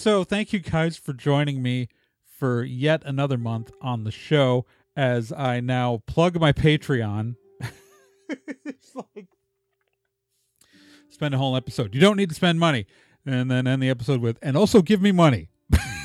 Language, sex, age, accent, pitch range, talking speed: English, male, 40-59, American, 125-175 Hz, 155 wpm